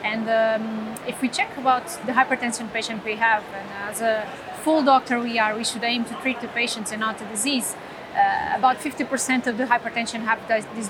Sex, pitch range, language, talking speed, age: female, 220-255 Hz, English, 205 wpm, 30-49